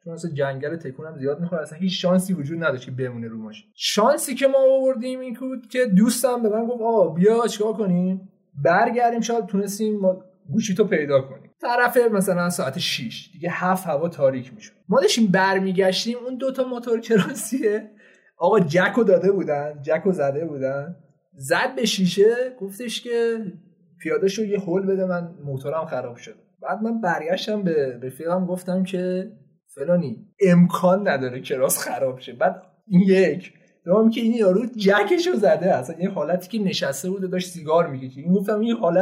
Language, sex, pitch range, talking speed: Persian, male, 175-220 Hz, 165 wpm